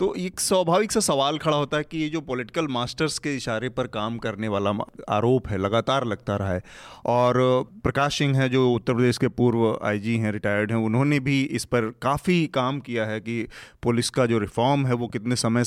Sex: male